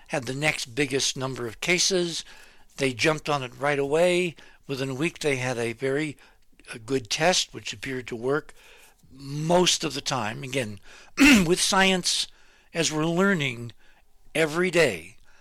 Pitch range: 130-165 Hz